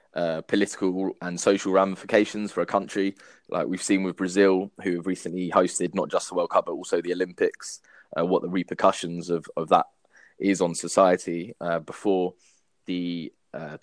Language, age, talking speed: English, 20-39, 175 wpm